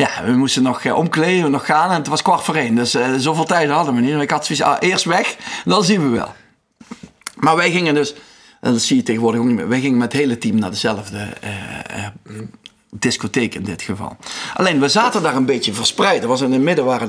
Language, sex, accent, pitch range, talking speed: Dutch, male, Dutch, 140-235 Hz, 250 wpm